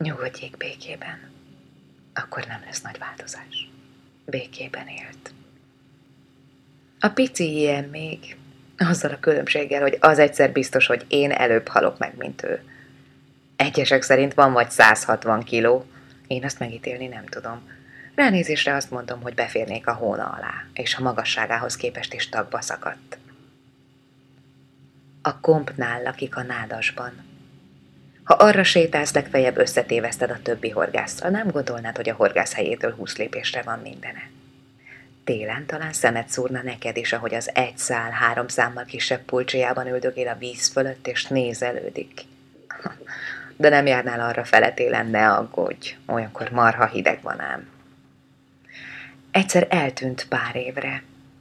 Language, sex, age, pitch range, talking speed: Hungarian, female, 20-39, 125-140 Hz, 130 wpm